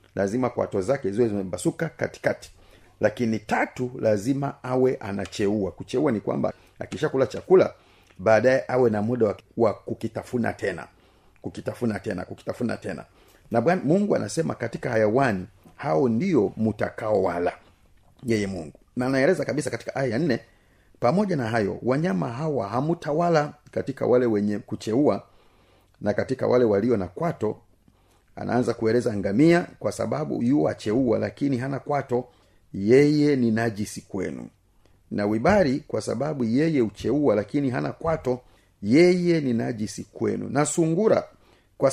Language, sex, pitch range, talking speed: Swahili, male, 100-140 Hz, 125 wpm